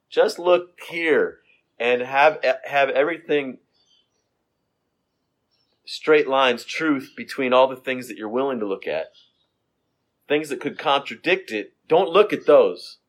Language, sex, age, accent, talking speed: English, male, 30-49, American, 135 wpm